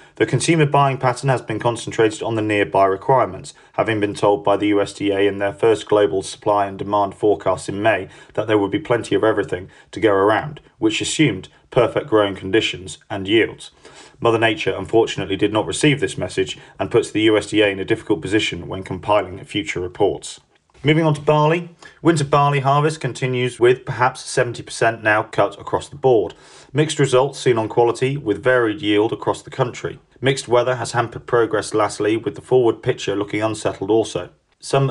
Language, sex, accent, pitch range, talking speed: English, male, British, 105-135 Hz, 180 wpm